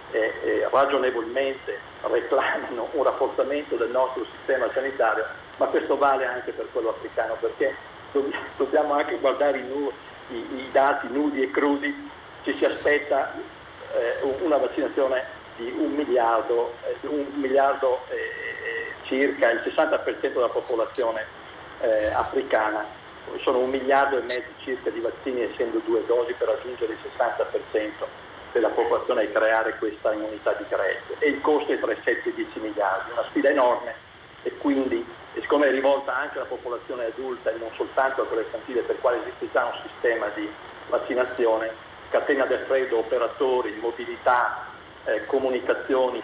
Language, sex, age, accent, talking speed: Italian, male, 50-69, native, 145 wpm